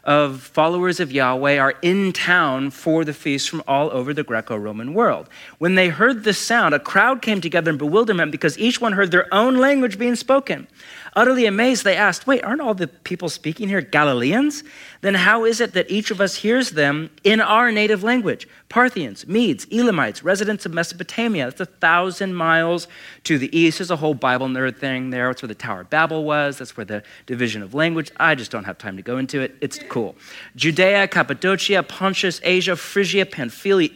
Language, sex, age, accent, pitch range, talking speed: English, male, 40-59, American, 140-195 Hz, 195 wpm